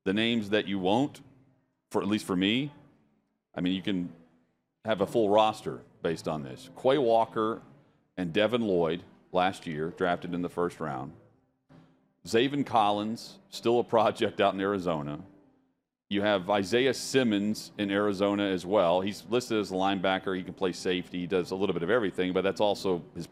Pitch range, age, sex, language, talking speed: 90-115 Hz, 40-59, male, English, 180 wpm